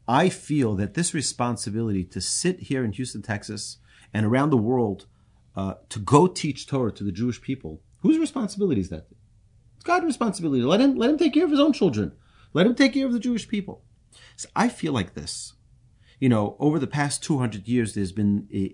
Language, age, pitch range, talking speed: English, 40-59, 105-160 Hz, 210 wpm